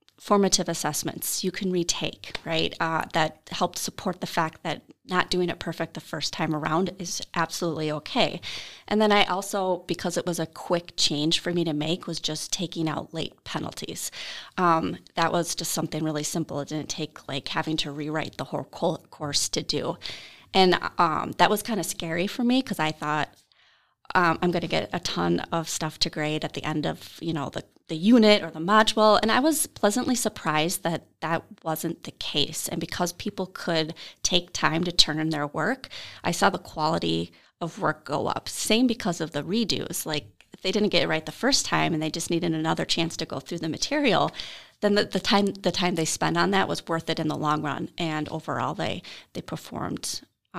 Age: 30-49